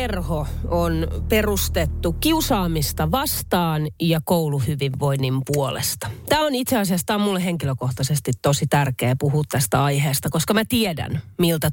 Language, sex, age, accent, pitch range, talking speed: Finnish, female, 30-49, native, 135-175 Hz, 115 wpm